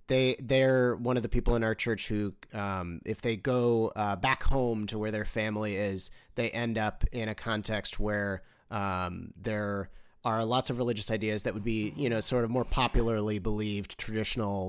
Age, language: 30-49, English